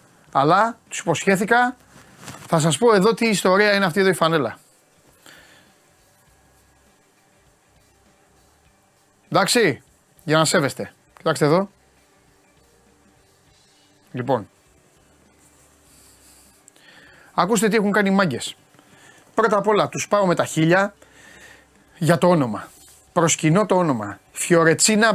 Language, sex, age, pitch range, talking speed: Greek, male, 30-49, 140-195 Hz, 100 wpm